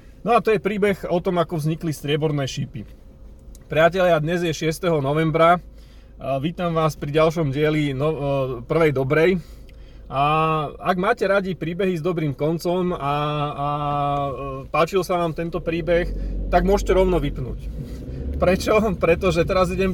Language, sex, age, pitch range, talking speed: Slovak, male, 30-49, 140-170 Hz, 140 wpm